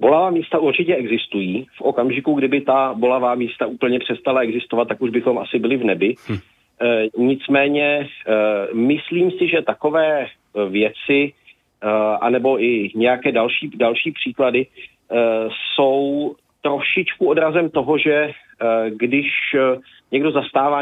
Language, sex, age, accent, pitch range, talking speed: Czech, male, 40-59, native, 120-145 Hz, 115 wpm